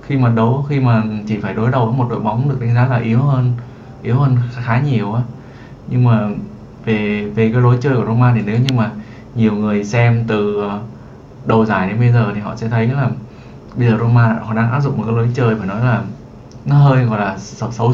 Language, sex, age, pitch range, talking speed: Vietnamese, male, 20-39, 110-130 Hz, 230 wpm